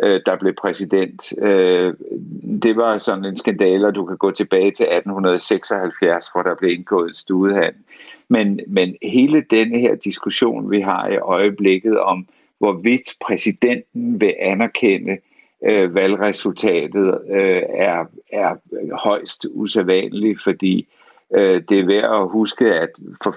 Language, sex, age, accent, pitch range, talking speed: Danish, male, 50-69, native, 95-115 Hz, 130 wpm